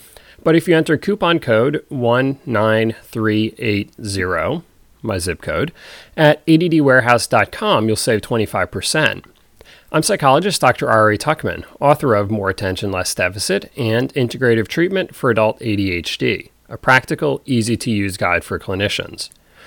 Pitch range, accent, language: 105-140 Hz, American, English